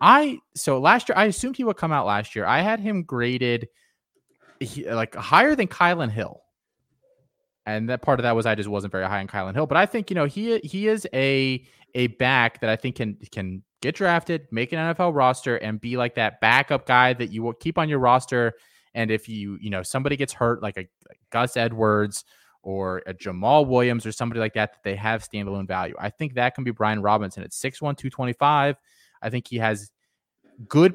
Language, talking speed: English, 215 wpm